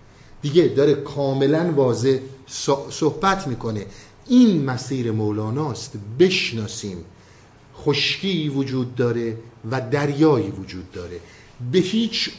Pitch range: 115-165 Hz